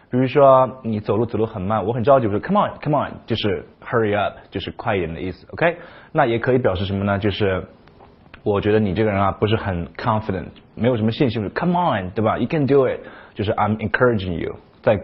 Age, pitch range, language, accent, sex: 20-39, 100-125 Hz, Chinese, native, male